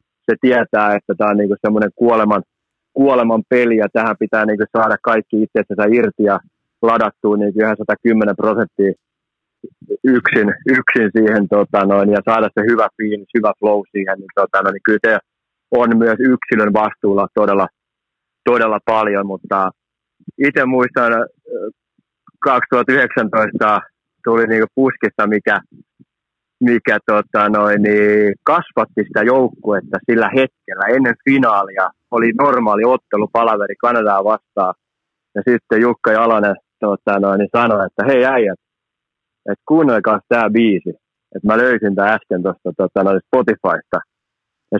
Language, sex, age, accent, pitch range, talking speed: Finnish, male, 30-49, native, 105-120 Hz, 130 wpm